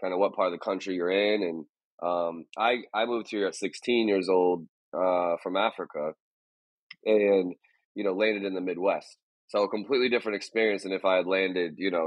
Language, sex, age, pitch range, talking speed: English, male, 20-39, 90-100 Hz, 205 wpm